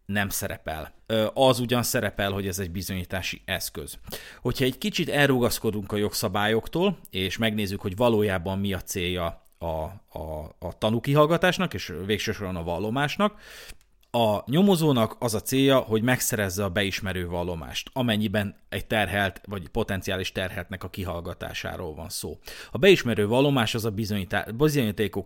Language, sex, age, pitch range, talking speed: Hungarian, male, 30-49, 95-120 Hz, 135 wpm